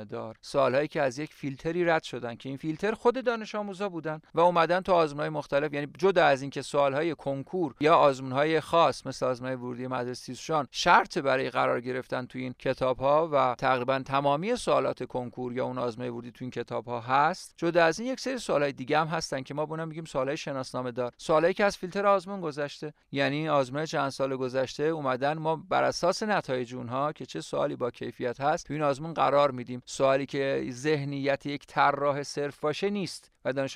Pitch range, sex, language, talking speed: 130-155 Hz, male, Persian, 190 wpm